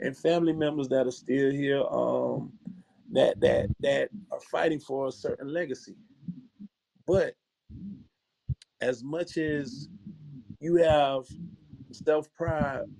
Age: 30-49